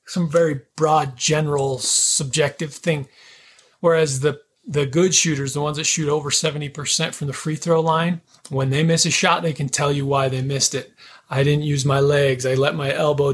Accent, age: American, 30-49